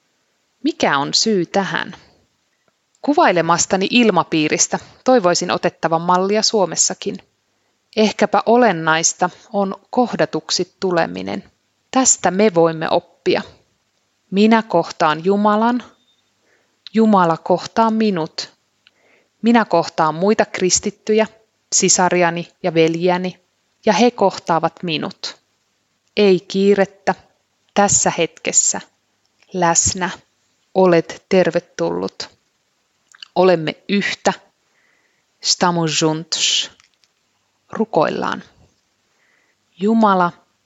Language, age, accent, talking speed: Finnish, 30-49, native, 70 wpm